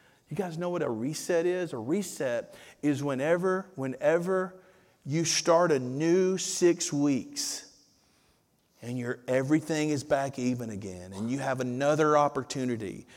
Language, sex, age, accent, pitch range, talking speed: English, male, 40-59, American, 115-160 Hz, 135 wpm